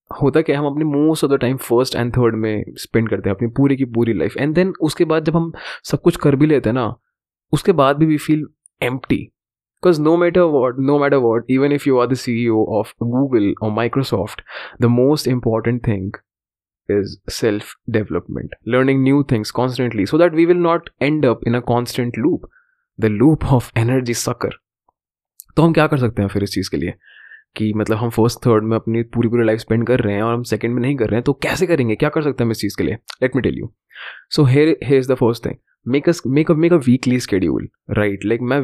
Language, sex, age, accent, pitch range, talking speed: Hindi, male, 20-39, native, 115-145 Hz, 220 wpm